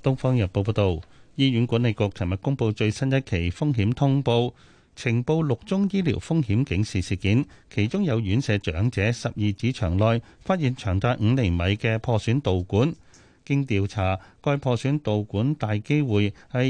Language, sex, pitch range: Chinese, male, 100-140 Hz